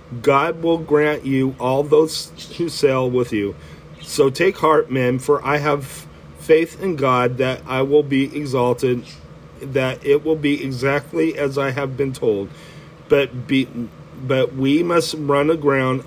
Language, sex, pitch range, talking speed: English, male, 130-150 Hz, 155 wpm